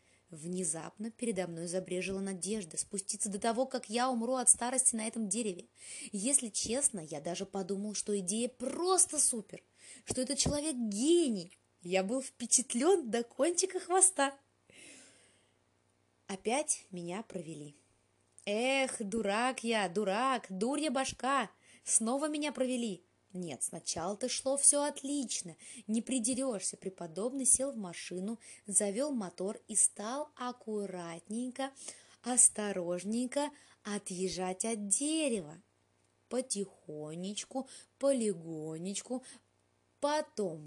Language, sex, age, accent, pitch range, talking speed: Russian, female, 20-39, native, 190-265 Hz, 105 wpm